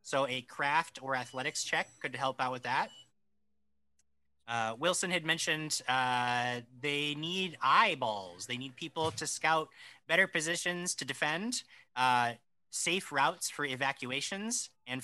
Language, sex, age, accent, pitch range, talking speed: English, male, 30-49, American, 125-160 Hz, 135 wpm